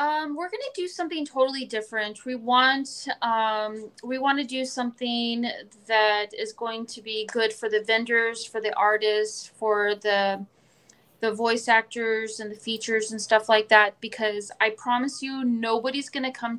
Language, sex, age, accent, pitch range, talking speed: English, female, 30-49, American, 215-245 Hz, 165 wpm